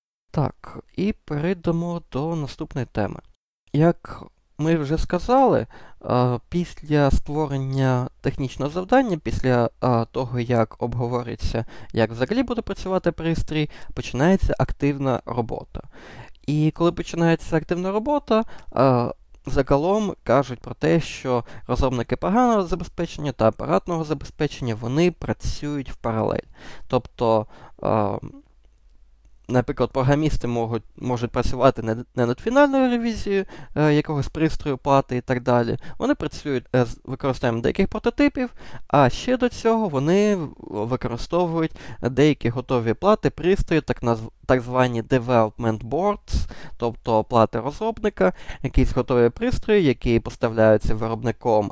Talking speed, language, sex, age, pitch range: 105 wpm, Ukrainian, male, 20-39, 120-170 Hz